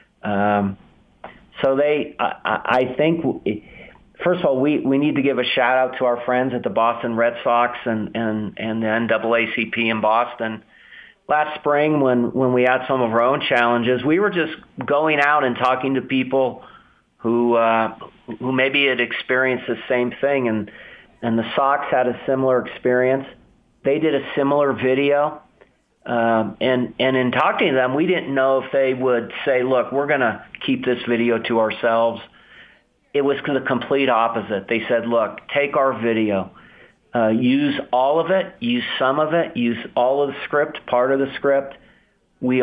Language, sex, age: English, male, 40-59